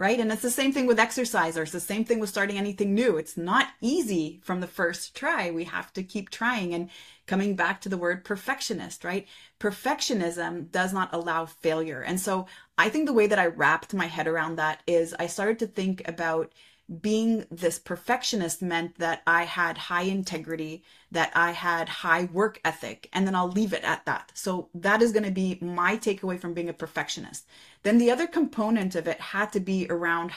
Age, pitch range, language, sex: 30-49, 170-210 Hz, English, female